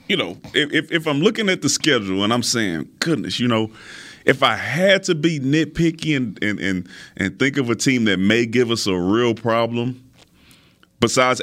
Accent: American